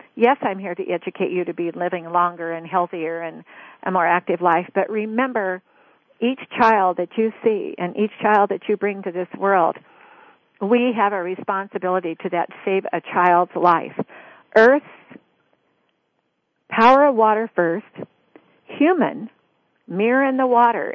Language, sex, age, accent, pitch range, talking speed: English, female, 50-69, American, 175-215 Hz, 150 wpm